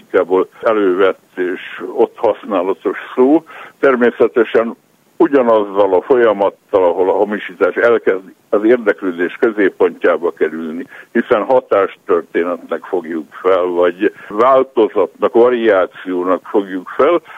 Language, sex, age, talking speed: Hungarian, male, 60-79, 95 wpm